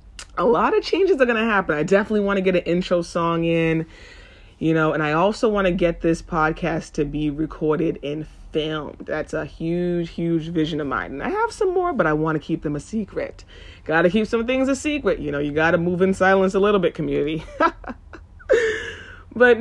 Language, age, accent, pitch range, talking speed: English, 30-49, American, 150-190 Hz, 220 wpm